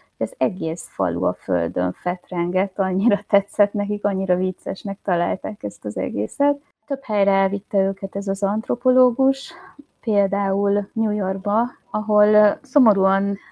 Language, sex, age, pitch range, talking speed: Hungarian, female, 20-39, 180-215 Hz, 120 wpm